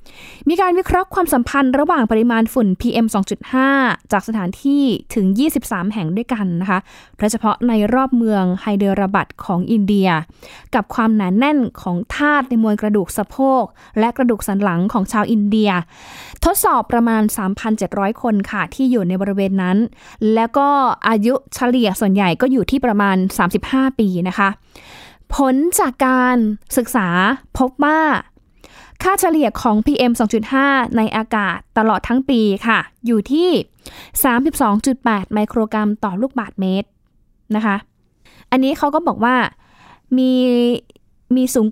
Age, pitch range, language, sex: 20-39, 210-265 Hz, Thai, female